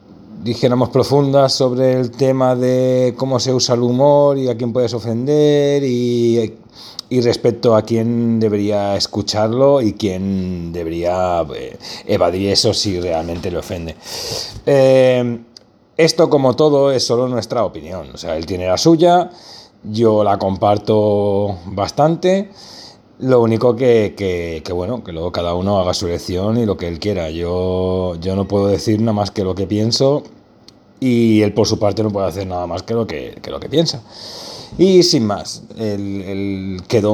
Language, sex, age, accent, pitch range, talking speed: Spanish, male, 30-49, Spanish, 100-130 Hz, 165 wpm